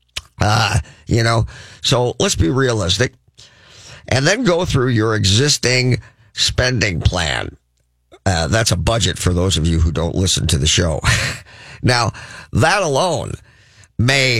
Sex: male